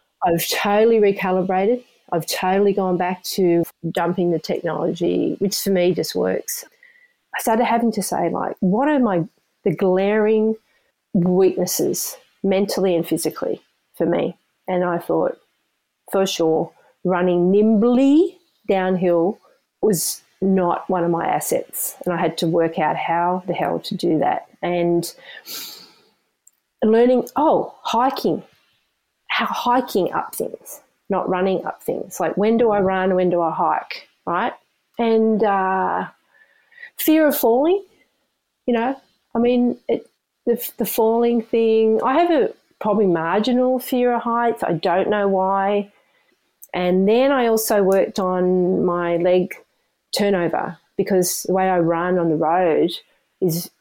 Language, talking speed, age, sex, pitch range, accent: English, 140 wpm, 40-59, female, 180-235 Hz, Australian